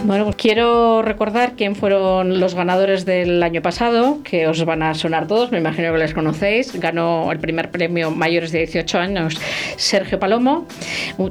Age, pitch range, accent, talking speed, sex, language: 20-39, 165-195 Hz, Spanish, 170 wpm, female, Spanish